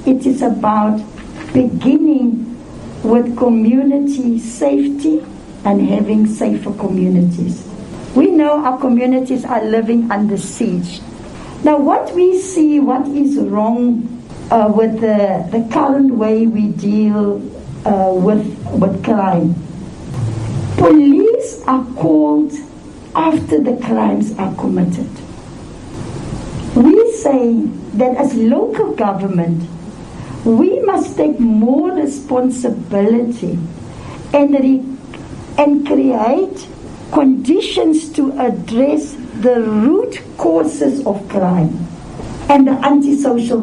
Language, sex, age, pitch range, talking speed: English, female, 60-79, 210-285 Hz, 100 wpm